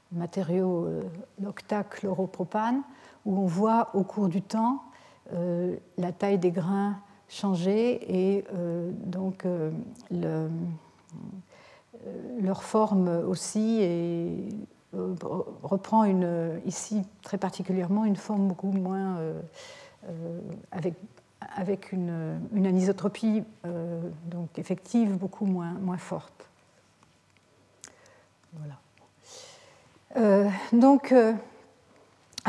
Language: French